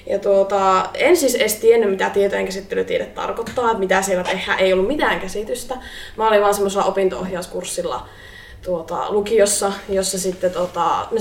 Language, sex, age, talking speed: English, female, 20-39, 150 wpm